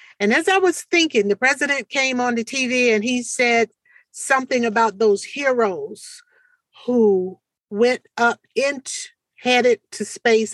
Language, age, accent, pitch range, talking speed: English, 50-69, American, 200-250 Hz, 135 wpm